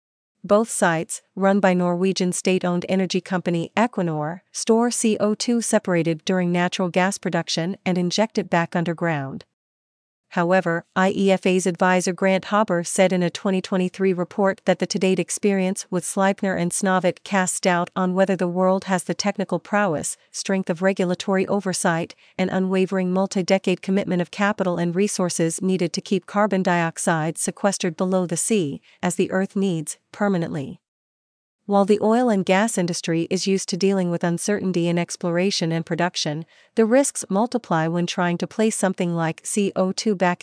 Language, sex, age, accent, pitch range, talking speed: English, female, 50-69, American, 175-195 Hz, 150 wpm